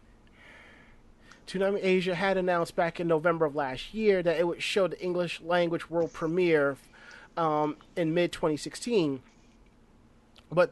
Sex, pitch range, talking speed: male, 155-195 Hz, 130 wpm